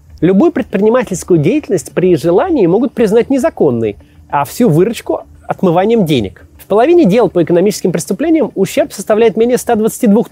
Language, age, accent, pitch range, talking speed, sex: Russian, 30-49, native, 165-240 Hz, 135 wpm, male